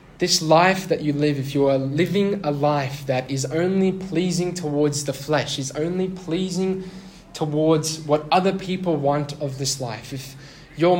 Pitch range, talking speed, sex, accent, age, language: 130-165 Hz, 170 wpm, male, Australian, 10-29, English